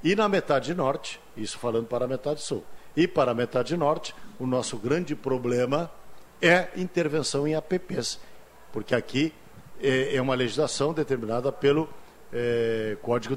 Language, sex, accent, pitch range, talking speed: Portuguese, male, Brazilian, 120-170 Hz, 140 wpm